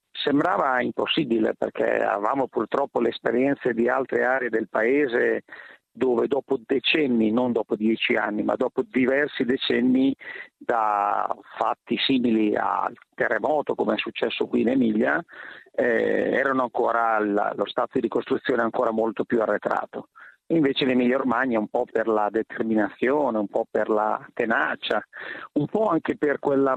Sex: male